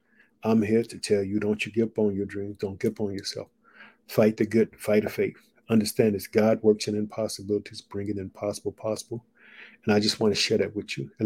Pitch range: 105-125 Hz